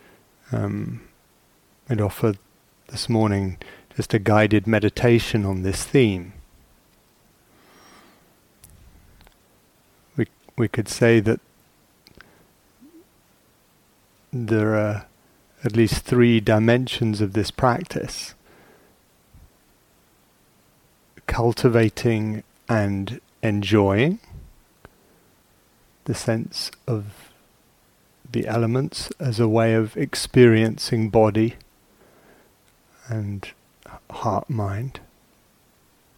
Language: English